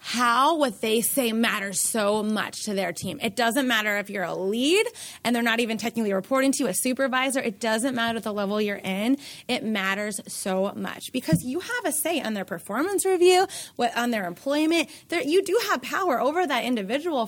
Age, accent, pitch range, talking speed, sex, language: 20-39, American, 225-315 Hz, 200 wpm, female, English